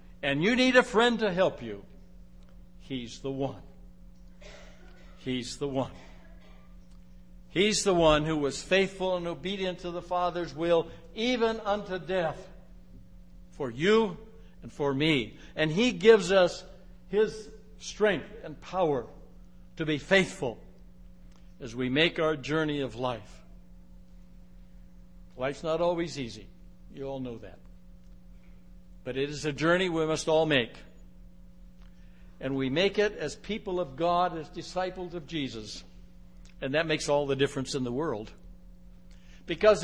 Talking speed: 135 wpm